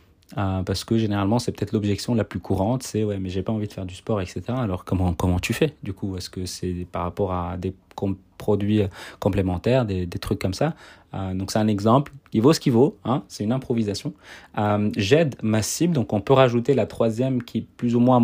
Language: French